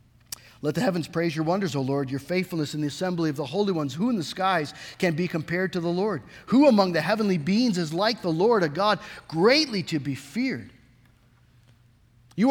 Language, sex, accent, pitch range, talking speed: English, male, American, 155-245 Hz, 205 wpm